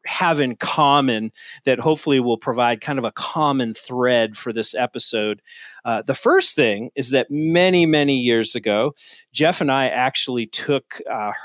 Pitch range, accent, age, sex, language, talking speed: 110-145 Hz, American, 40-59, male, English, 160 wpm